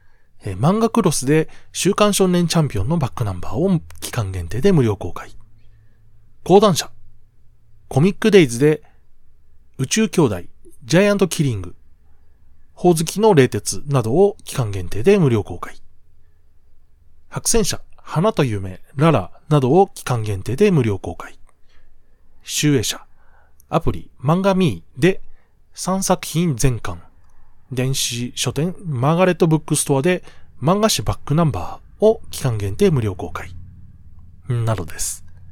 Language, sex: Japanese, male